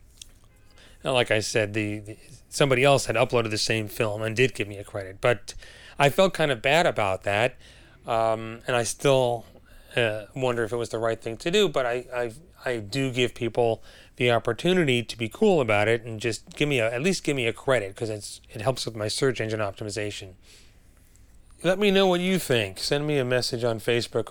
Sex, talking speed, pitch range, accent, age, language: male, 210 wpm, 105-130 Hz, American, 30-49, English